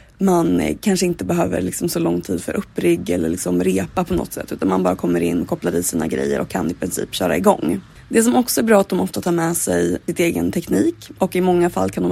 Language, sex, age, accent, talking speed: Swedish, female, 20-39, native, 260 wpm